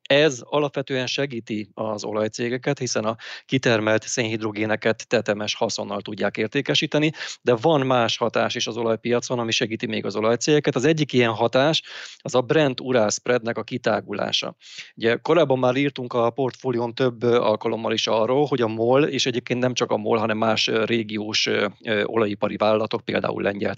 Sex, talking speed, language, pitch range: male, 155 wpm, Hungarian, 110-130 Hz